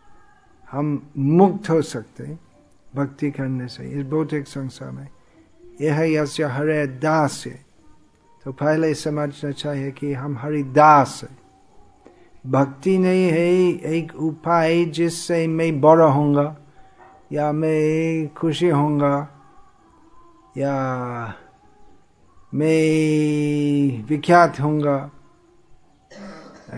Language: Hindi